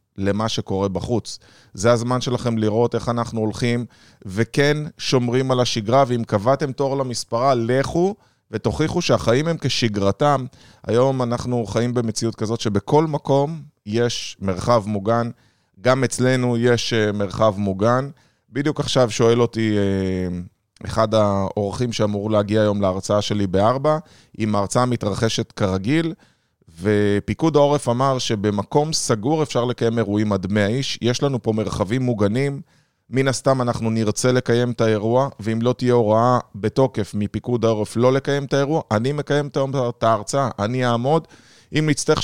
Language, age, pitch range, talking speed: Hebrew, 20-39, 110-135 Hz, 135 wpm